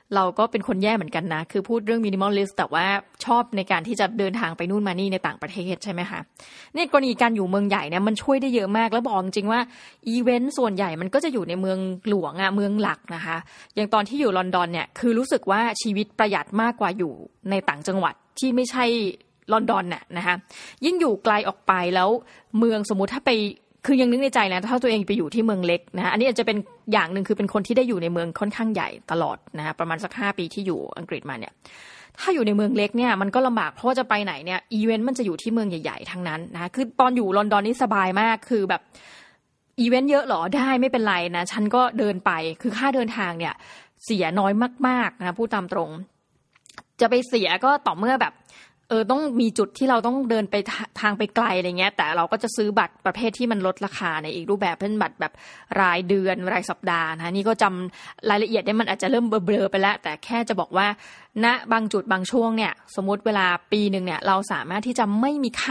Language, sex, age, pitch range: Thai, female, 20-39, 190-235 Hz